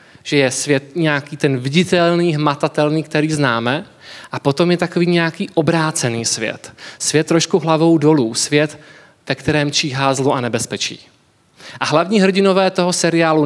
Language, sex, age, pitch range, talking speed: Czech, male, 20-39, 140-170 Hz, 145 wpm